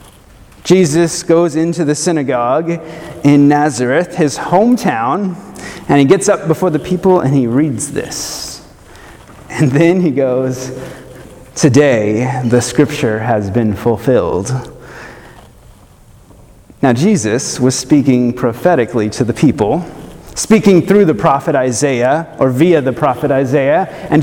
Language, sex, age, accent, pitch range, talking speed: English, male, 30-49, American, 140-195 Hz, 120 wpm